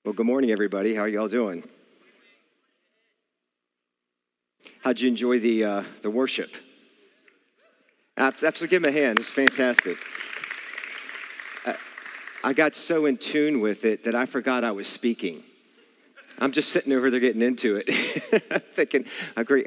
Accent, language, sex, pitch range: American, English, male, 95-120 Hz